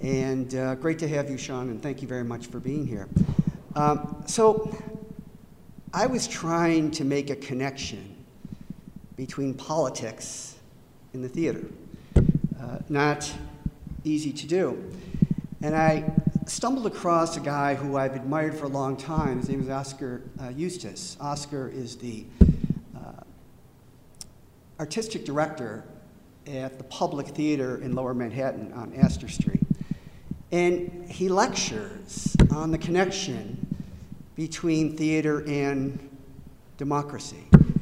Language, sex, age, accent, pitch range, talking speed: English, male, 50-69, American, 135-175 Hz, 125 wpm